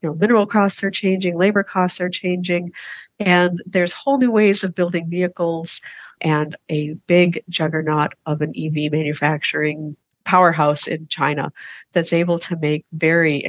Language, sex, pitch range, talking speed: English, female, 150-180 Hz, 140 wpm